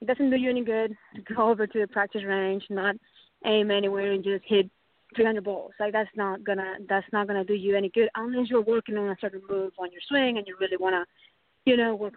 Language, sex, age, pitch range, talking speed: English, female, 20-39, 190-225 Hz, 235 wpm